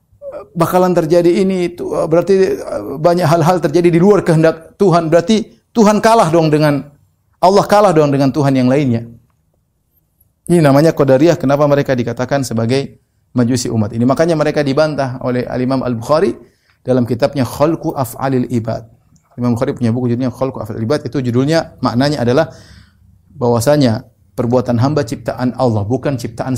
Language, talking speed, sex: Indonesian, 145 wpm, male